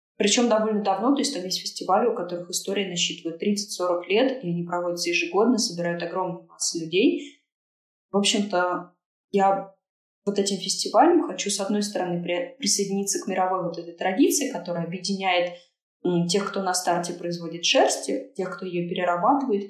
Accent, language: native, Russian